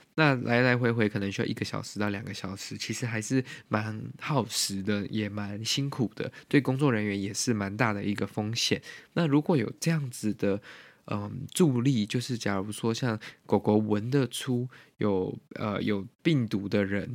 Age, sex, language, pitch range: 20-39, male, Chinese, 105-130 Hz